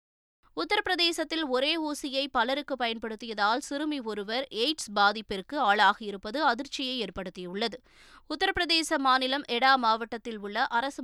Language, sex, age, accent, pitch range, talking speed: Tamil, female, 20-39, native, 225-290 Hz, 100 wpm